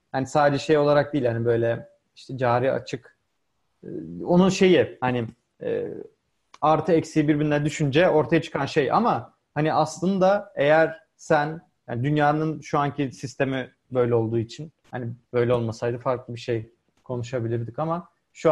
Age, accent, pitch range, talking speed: 40-59, native, 130-155 Hz, 145 wpm